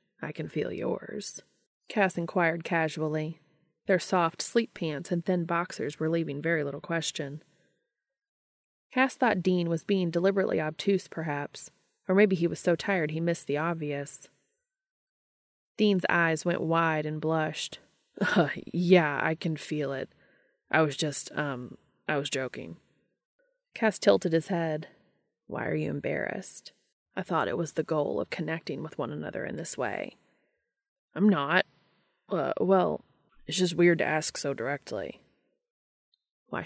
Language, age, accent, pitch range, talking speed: English, 20-39, American, 155-190 Hz, 145 wpm